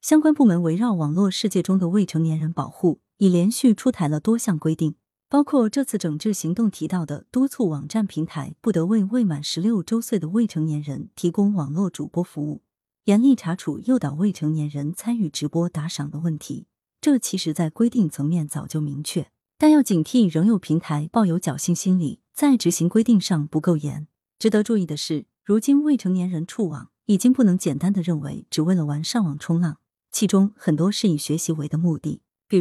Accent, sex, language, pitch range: native, female, Chinese, 155-225 Hz